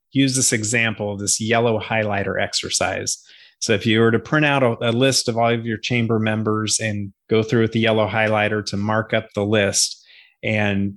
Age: 30-49